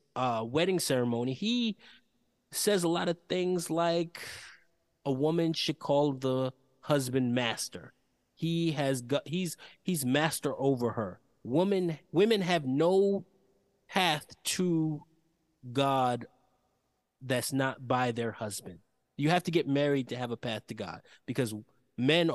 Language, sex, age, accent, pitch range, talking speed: English, male, 30-49, American, 125-165 Hz, 135 wpm